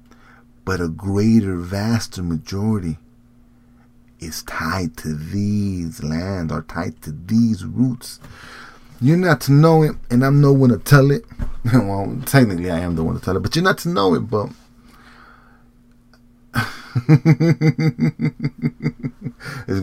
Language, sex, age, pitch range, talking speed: English, male, 30-49, 100-120 Hz, 135 wpm